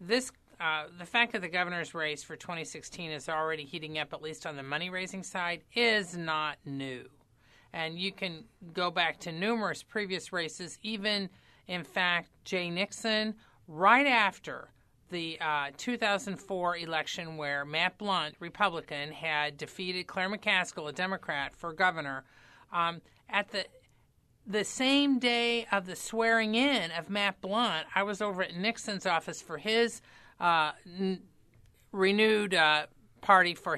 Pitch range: 160-210 Hz